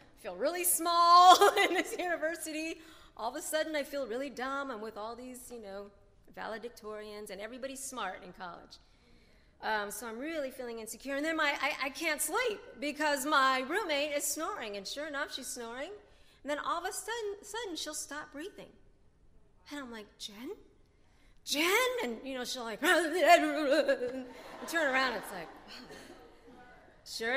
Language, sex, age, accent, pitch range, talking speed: English, female, 40-59, American, 255-315 Hz, 165 wpm